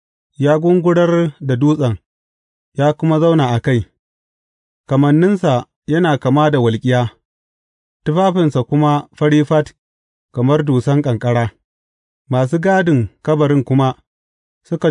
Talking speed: 95 wpm